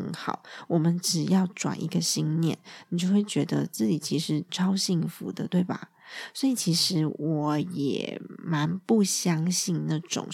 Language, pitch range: Chinese, 160-200 Hz